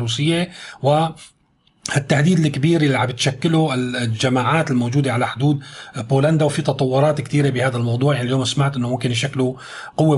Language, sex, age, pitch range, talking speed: Arabic, male, 30-49, 135-165 Hz, 130 wpm